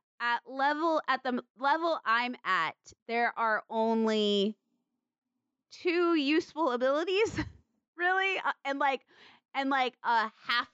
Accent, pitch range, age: American, 200-260 Hz, 20-39